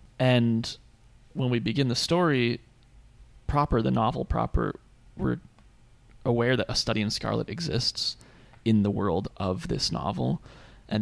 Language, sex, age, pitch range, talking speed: English, male, 20-39, 110-120 Hz, 135 wpm